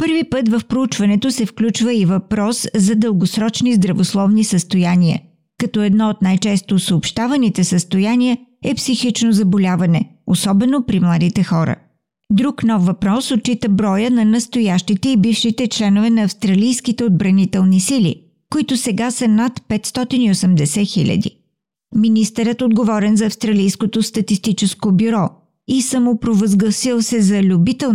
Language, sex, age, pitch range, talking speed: Bulgarian, female, 50-69, 190-235 Hz, 120 wpm